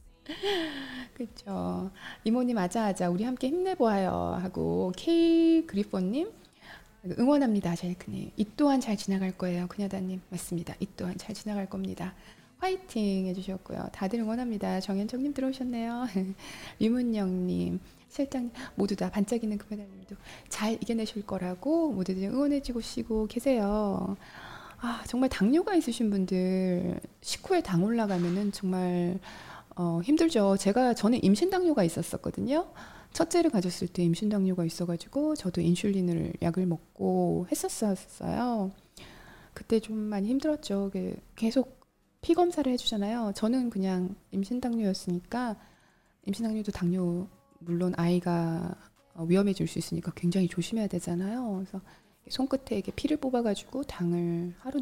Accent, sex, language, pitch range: native, female, Korean, 185-245 Hz